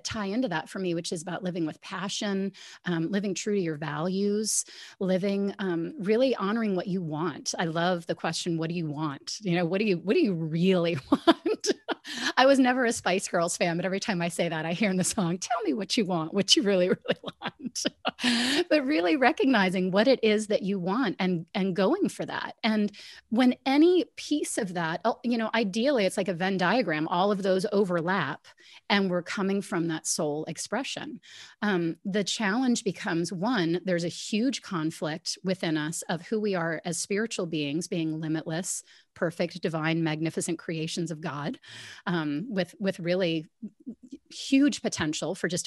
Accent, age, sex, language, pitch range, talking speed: American, 30-49, female, English, 170-215 Hz, 190 wpm